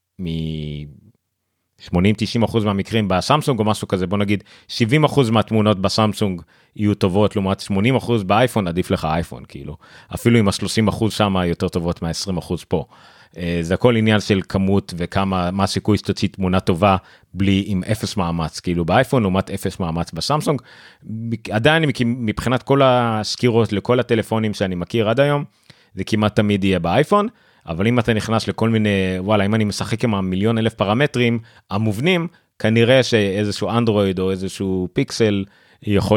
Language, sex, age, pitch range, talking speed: Hebrew, male, 30-49, 95-115 Hz, 145 wpm